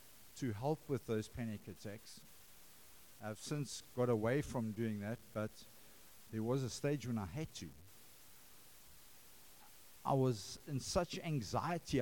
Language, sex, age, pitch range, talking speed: English, male, 60-79, 105-140 Hz, 135 wpm